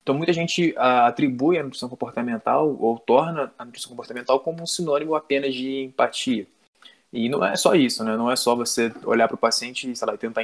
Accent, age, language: Brazilian, 20-39, Portuguese